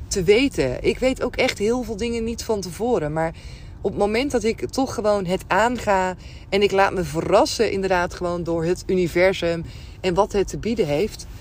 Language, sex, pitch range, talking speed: Dutch, female, 170-235 Hz, 200 wpm